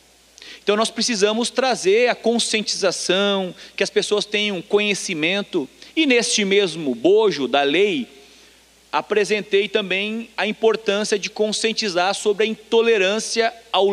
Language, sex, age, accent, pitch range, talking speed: Portuguese, male, 40-59, Brazilian, 185-230 Hz, 115 wpm